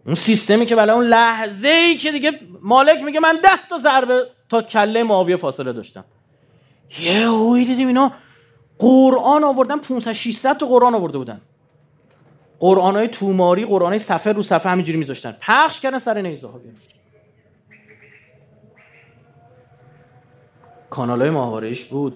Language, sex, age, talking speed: Persian, male, 30-49, 135 wpm